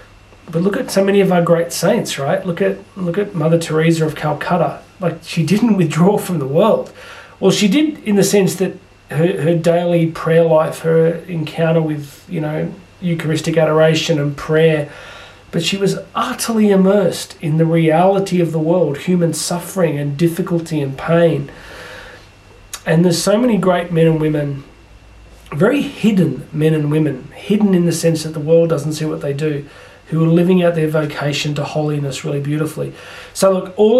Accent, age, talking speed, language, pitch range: Australian, 30-49, 180 wpm, English, 155-180 Hz